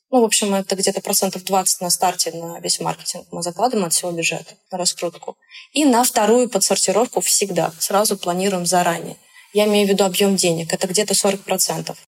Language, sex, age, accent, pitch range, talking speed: Russian, female, 20-39, native, 190-230 Hz, 170 wpm